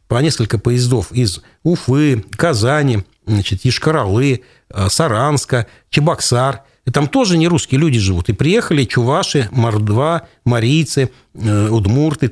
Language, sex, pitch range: Russian, male, 115-170 Hz